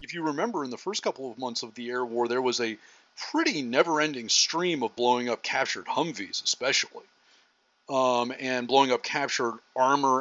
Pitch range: 125-170 Hz